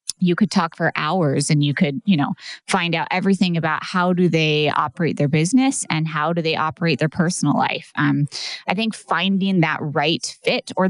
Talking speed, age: 200 wpm, 20-39